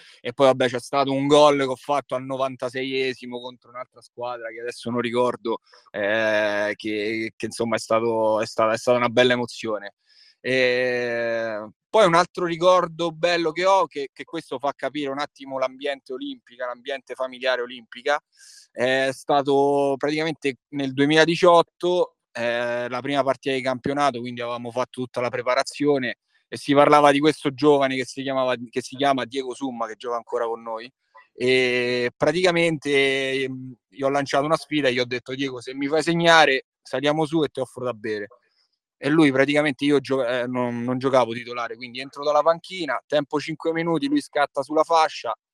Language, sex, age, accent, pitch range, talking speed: Italian, male, 20-39, native, 120-150 Hz, 170 wpm